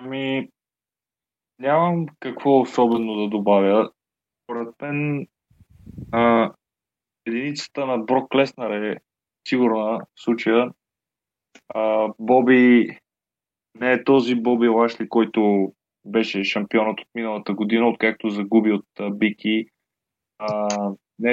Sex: male